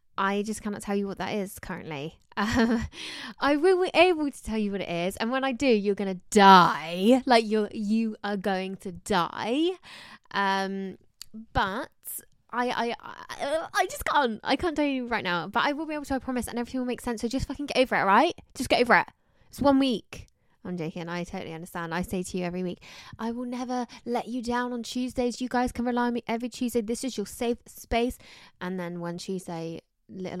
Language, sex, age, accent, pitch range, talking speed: English, female, 20-39, British, 185-245 Hz, 220 wpm